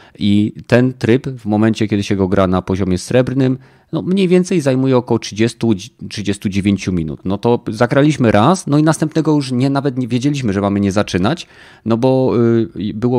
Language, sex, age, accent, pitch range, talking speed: Polish, male, 30-49, native, 95-125 Hz, 175 wpm